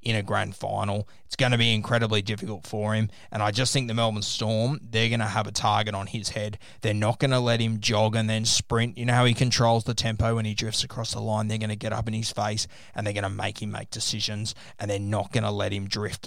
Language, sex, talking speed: English, male, 275 wpm